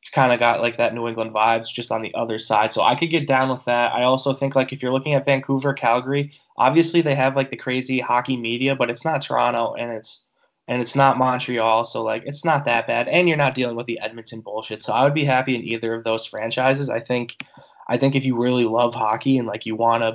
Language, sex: English, male